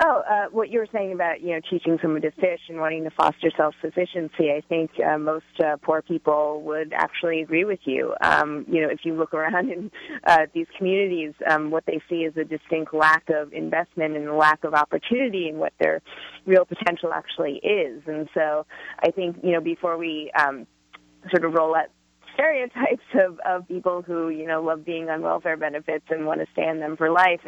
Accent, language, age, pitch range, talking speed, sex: American, English, 30-49, 155-180 Hz, 210 wpm, female